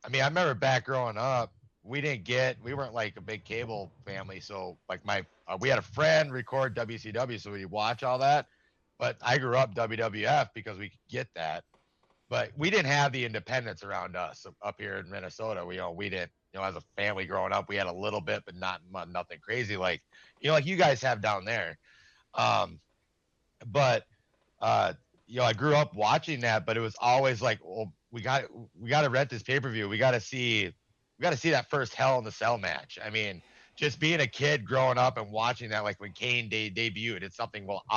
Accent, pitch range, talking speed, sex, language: American, 105-130 Hz, 230 wpm, male, English